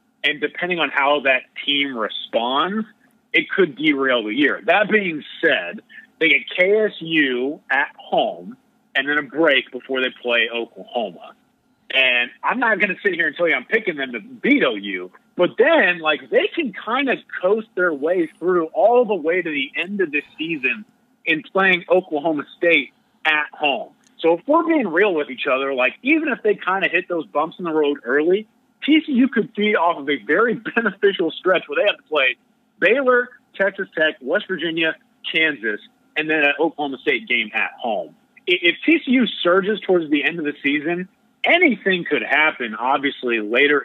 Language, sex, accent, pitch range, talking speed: English, male, American, 145-230 Hz, 180 wpm